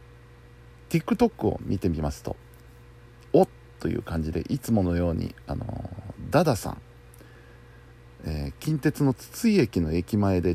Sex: male